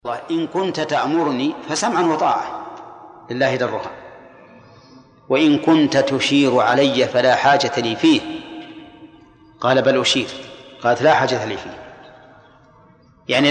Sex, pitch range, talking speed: male, 130-160 Hz, 110 wpm